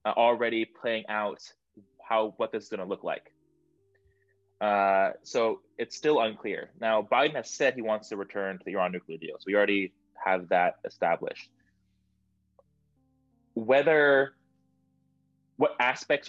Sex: male